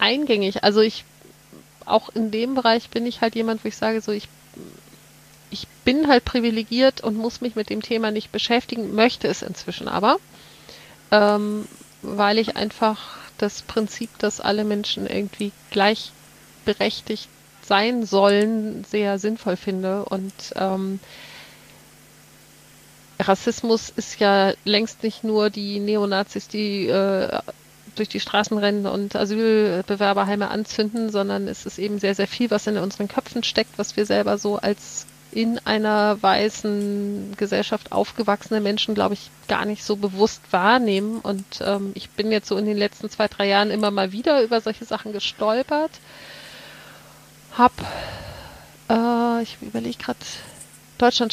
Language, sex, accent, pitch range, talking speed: German, female, German, 200-225 Hz, 140 wpm